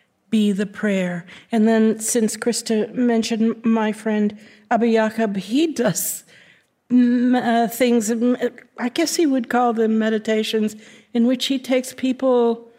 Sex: female